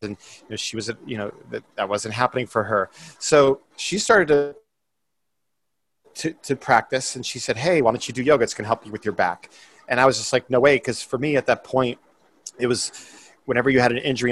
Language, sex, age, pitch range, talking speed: English, male, 30-49, 115-130 Hz, 240 wpm